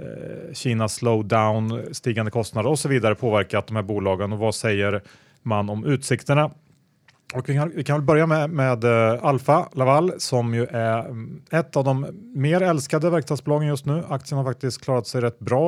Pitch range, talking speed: 110-135 Hz, 170 wpm